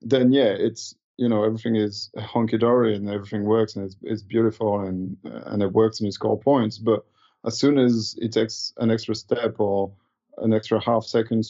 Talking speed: 195 wpm